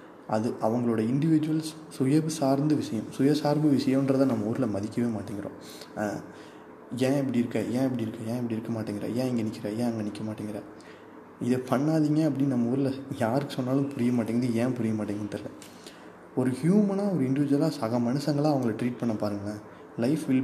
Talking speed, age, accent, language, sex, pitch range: 160 wpm, 20-39, native, Tamil, male, 110-140 Hz